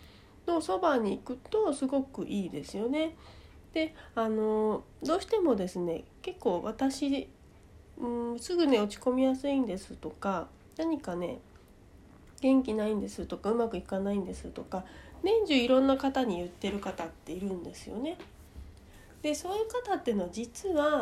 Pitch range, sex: 205-310 Hz, female